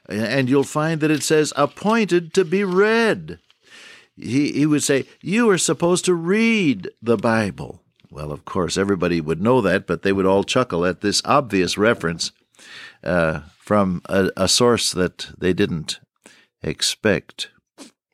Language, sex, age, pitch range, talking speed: English, male, 60-79, 95-145 Hz, 150 wpm